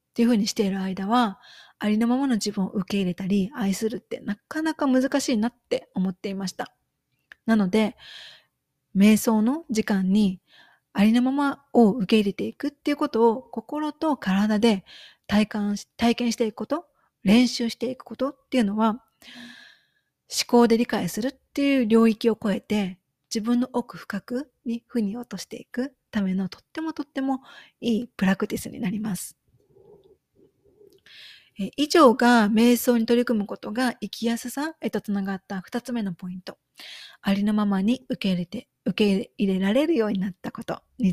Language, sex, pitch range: Japanese, female, 205-255 Hz